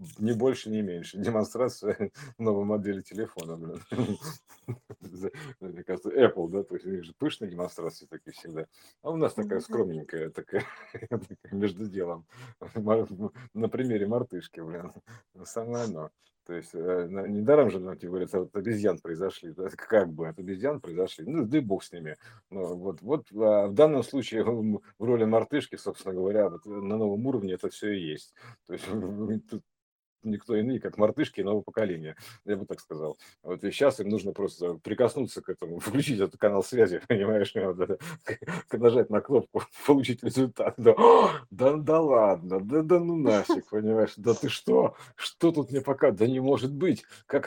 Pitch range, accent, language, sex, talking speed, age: 95-135 Hz, native, Russian, male, 150 wpm, 50-69